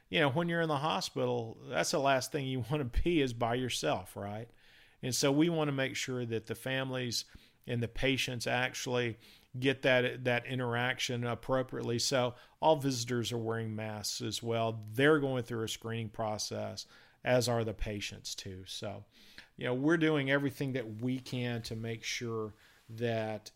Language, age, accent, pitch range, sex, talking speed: English, 50-69, American, 115-135 Hz, male, 180 wpm